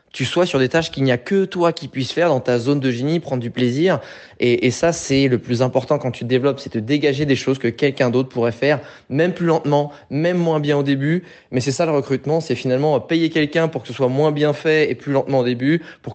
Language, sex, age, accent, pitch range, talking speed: French, male, 20-39, French, 120-150 Hz, 270 wpm